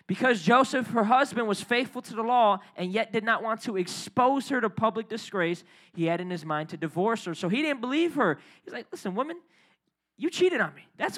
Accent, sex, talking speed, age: American, male, 225 wpm, 20-39